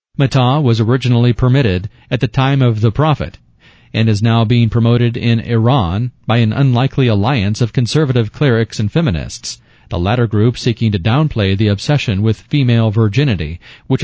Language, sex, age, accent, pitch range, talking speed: English, male, 40-59, American, 110-135 Hz, 160 wpm